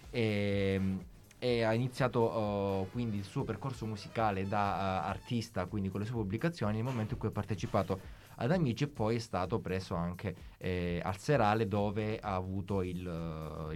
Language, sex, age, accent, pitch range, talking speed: Italian, male, 20-39, native, 105-135 Hz, 175 wpm